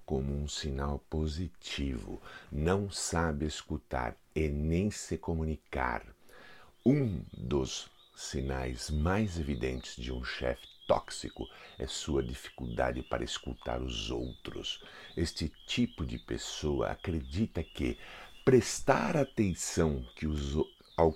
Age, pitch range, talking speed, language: 50-69, 65-80 Hz, 100 wpm, Portuguese